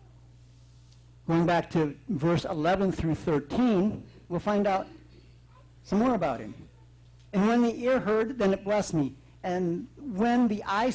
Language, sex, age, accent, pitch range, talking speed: English, male, 60-79, American, 120-205 Hz, 150 wpm